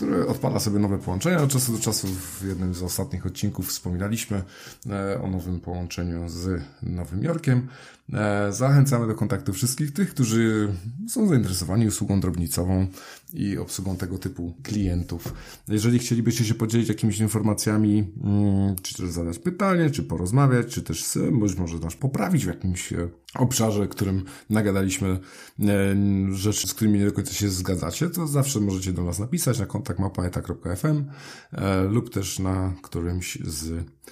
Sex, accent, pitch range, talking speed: male, native, 90-115 Hz, 145 wpm